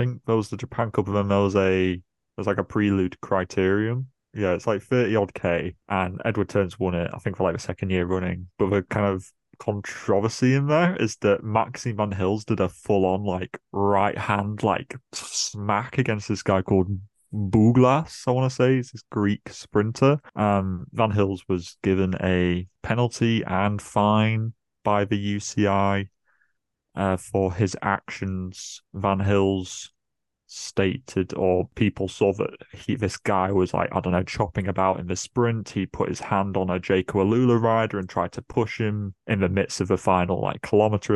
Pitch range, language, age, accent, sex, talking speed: 95-110 Hz, English, 20-39, British, male, 185 wpm